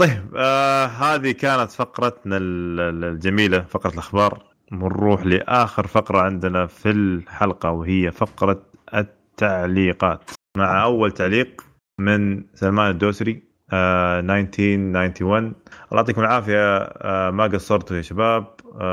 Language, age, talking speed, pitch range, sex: Arabic, 20-39, 105 wpm, 95-105 Hz, male